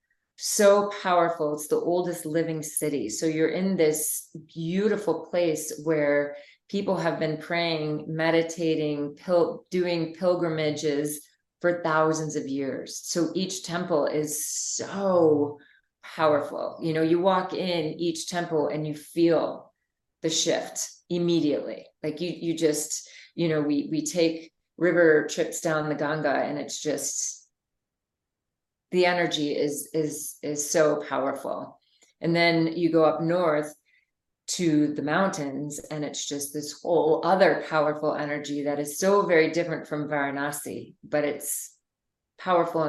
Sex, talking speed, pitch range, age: female, 135 wpm, 145-170 Hz, 30-49